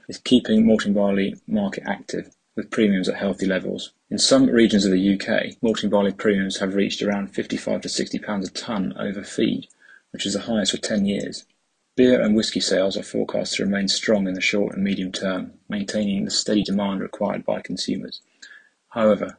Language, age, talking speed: English, 30-49, 190 wpm